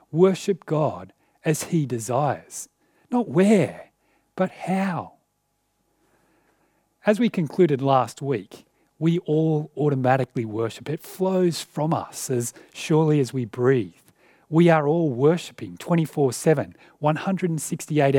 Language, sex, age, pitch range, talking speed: English, male, 40-59, 135-175 Hz, 110 wpm